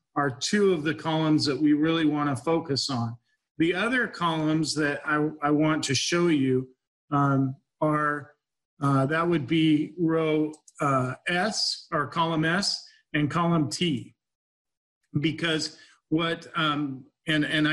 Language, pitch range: English, 145-165 Hz